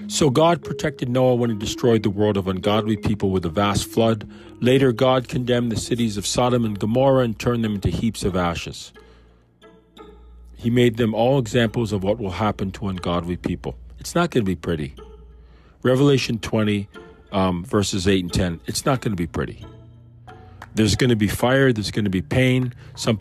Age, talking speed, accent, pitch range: 40-59, 190 wpm, American, 95-120 Hz